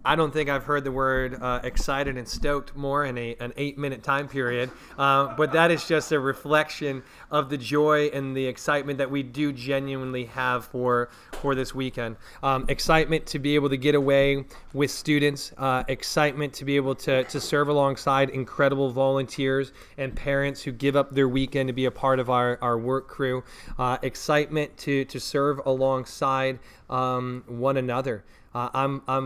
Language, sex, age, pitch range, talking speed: English, male, 30-49, 120-140 Hz, 185 wpm